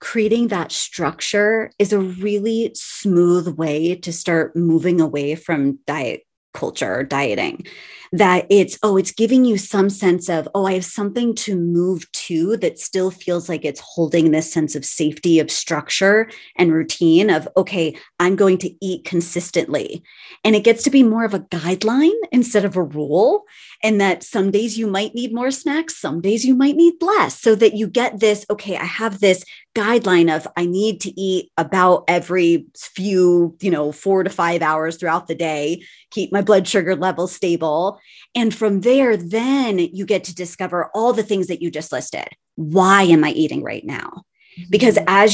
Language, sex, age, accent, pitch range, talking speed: English, female, 30-49, American, 170-225 Hz, 185 wpm